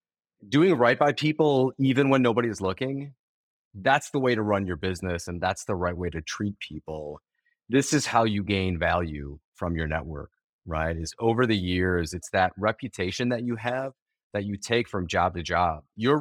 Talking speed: 195 wpm